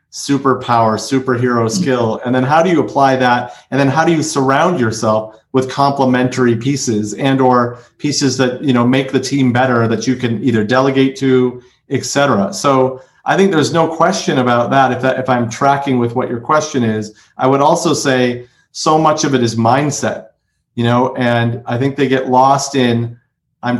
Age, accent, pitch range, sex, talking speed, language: 40-59, American, 120-140 Hz, male, 190 wpm, English